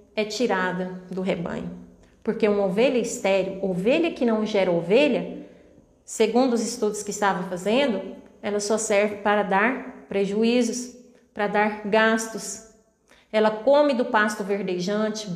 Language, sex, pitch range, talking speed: Portuguese, female, 200-240 Hz, 130 wpm